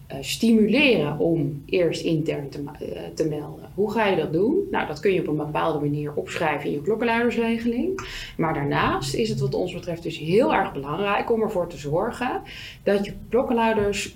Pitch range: 155-215 Hz